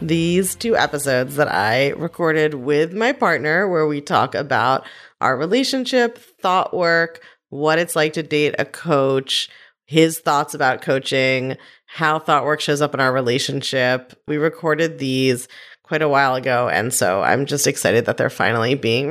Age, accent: 30-49, American